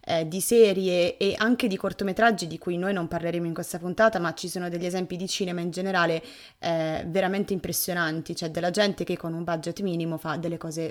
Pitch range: 165-200 Hz